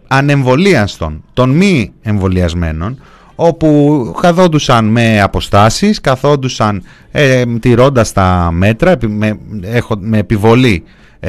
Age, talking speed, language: 30-49, 80 wpm, Greek